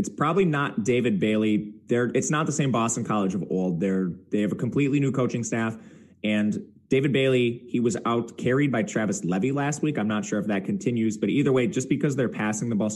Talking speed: 225 wpm